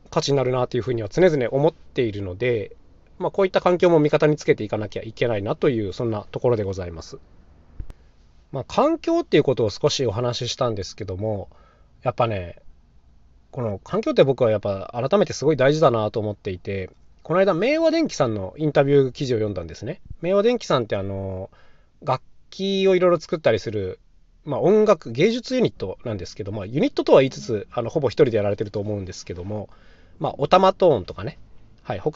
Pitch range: 95-160 Hz